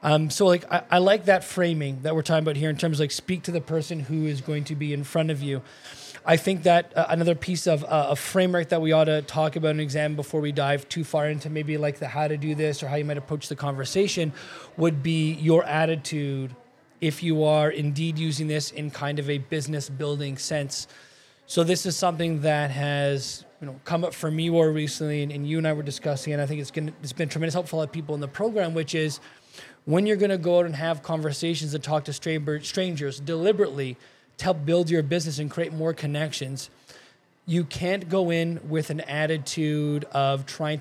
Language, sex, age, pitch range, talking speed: English, male, 20-39, 150-170 Hz, 230 wpm